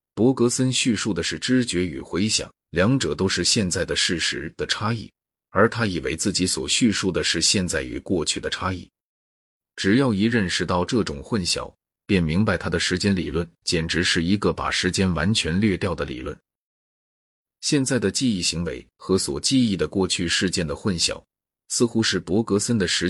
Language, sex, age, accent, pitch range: Chinese, male, 30-49, native, 80-105 Hz